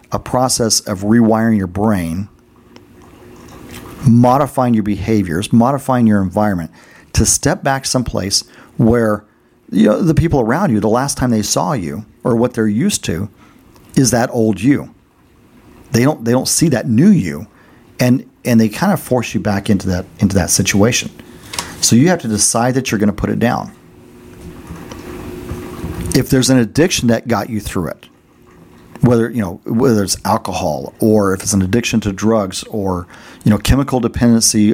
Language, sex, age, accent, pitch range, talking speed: English, male, 40-59, American, 100-120 Hz, 170 wpm